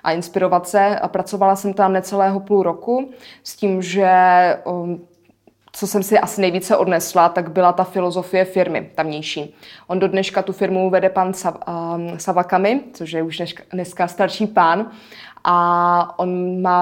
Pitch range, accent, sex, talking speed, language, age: 180-200 Hz, native, female, 145 wpm, Czech, 20-39